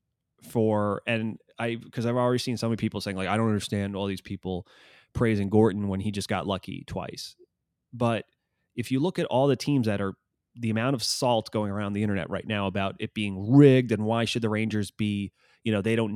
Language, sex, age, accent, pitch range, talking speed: English, male, 30-49, American, 100-120 Hz, 225 wpm